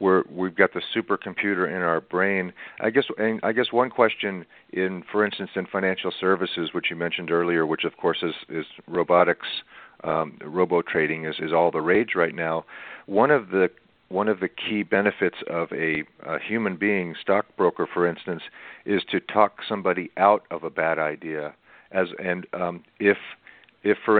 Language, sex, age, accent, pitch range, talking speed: English, male, 50-69, American, 85-100 Hz, 180 wpm